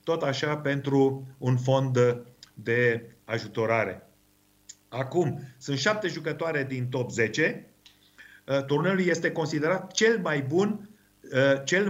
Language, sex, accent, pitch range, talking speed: Romanian, male, native, 125-165 Hz, 115 wpm